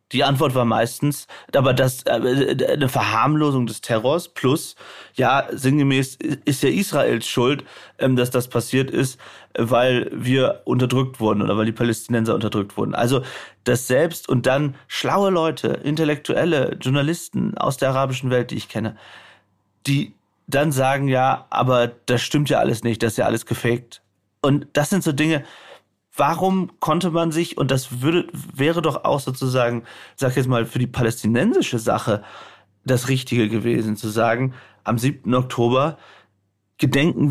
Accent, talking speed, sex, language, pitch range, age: German, 150 wpm, male, German, 120-145 Hz, 30-49